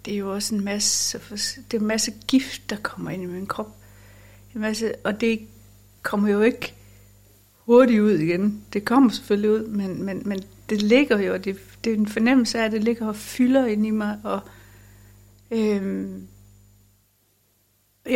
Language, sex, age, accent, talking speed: Danish, female, 60-79, native, 170 wpm